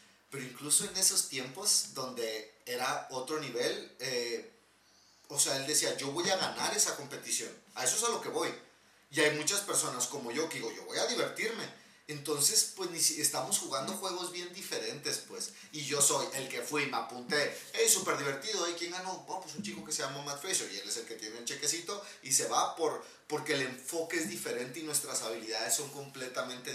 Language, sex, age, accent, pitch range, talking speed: Spanish, male, 30-49, Mexican, 140-190 Hz, 210 wpm